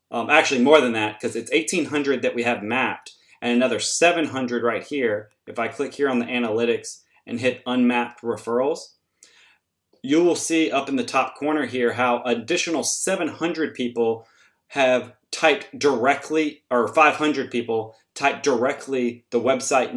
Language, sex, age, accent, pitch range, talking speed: English, male, 30-49, American, 120-150 Hz, 155 wpm